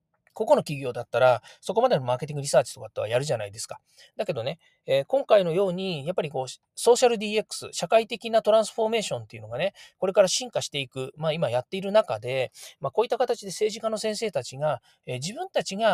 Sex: male